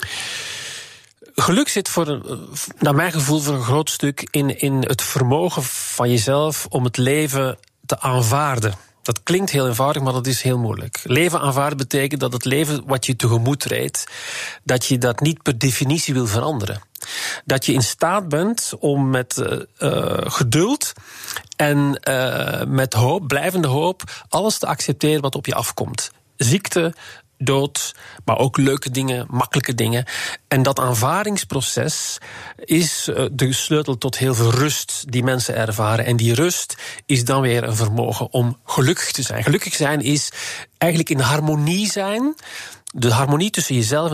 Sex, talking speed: male, 155 wpm